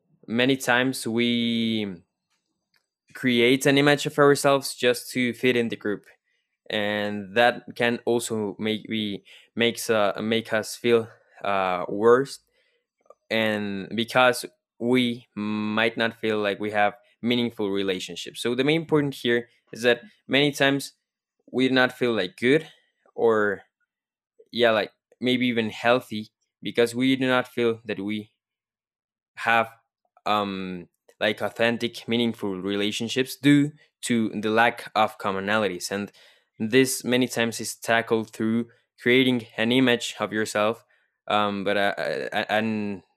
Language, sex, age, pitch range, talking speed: English, male, 20-39, 105-125 Hz, 130 wpm